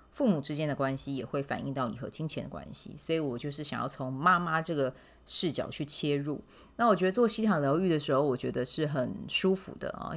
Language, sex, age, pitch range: Chinese, female, 20-39, 140-175 Hz